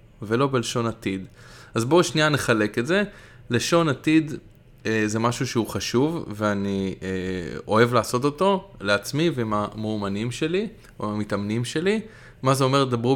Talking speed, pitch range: 135 wpm, 110-140 Hz